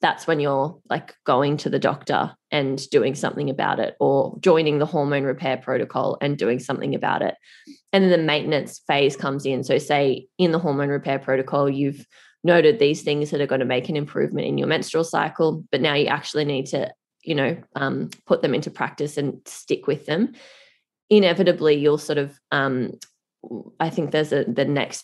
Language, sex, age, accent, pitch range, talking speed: English, female, 20-39, Australian, 135-160 Hz, 190 wpm